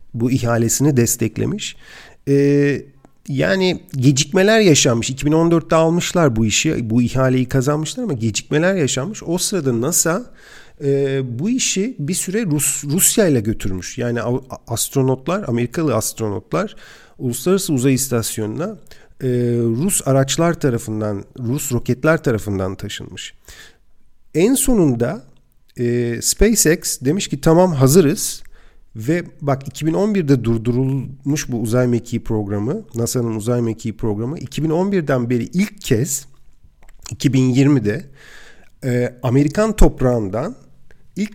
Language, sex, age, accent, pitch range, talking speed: Turkish, male, 50-69, native, 120-160 Hz, 105 wpm